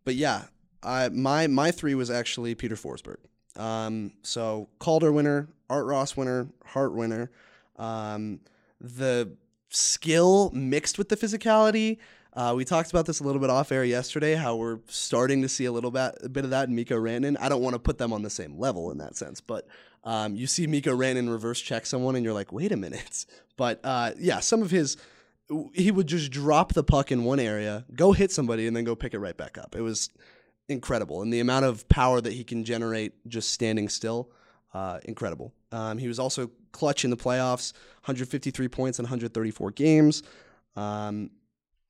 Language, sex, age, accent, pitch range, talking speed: English, male, 20-39, American, 115-145 Hz, 195 wpm